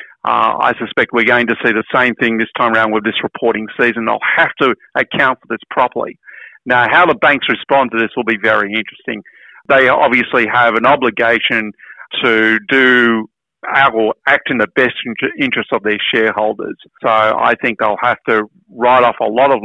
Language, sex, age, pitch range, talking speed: English, male, 50-69, 110-125 Hz, 190 wpm